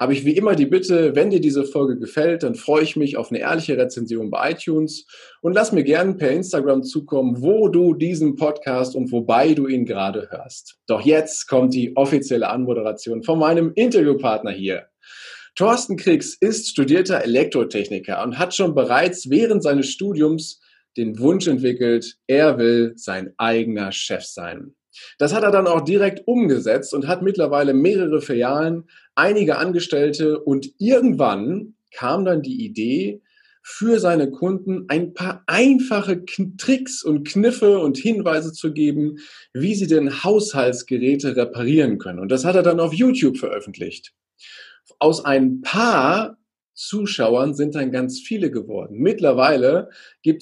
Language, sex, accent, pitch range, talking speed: German, male, German, 135-195 Hz, 150 wpm